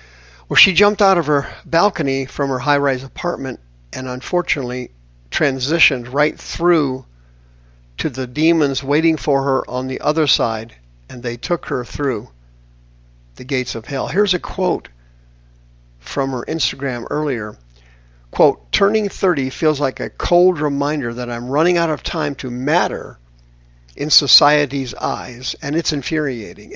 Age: 50-69